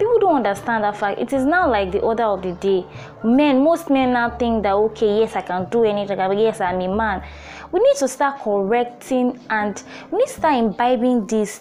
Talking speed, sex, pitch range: 220 wpm, female, 205-280 Hz